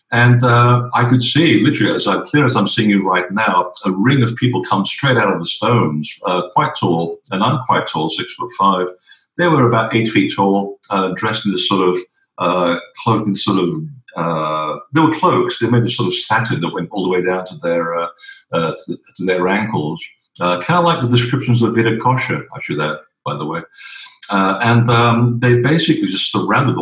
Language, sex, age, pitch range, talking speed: English, male, 50-69, 95-125 Hz, 215 wpm